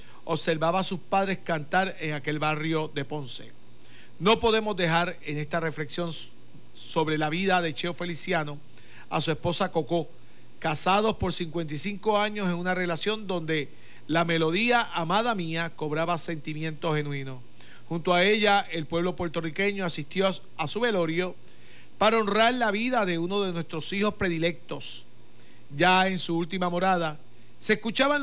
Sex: male